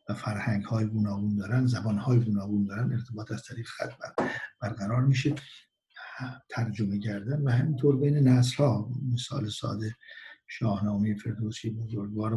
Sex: male